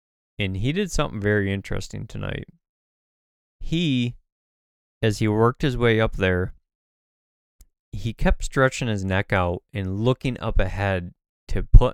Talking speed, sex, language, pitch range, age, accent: 135 wpm, male, English, 95-115 Hz, 20-39, American